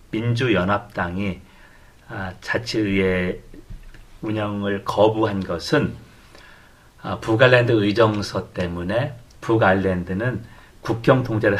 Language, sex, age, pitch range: Korean, male, 40-59, 100-135 Hz